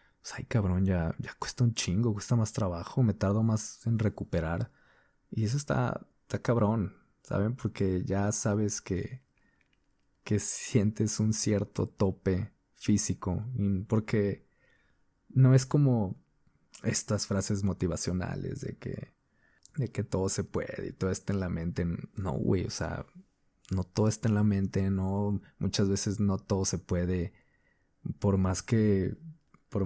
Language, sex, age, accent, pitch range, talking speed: Spanish, male, 20-39, Mexican, 95-115 Hz, 145 wpm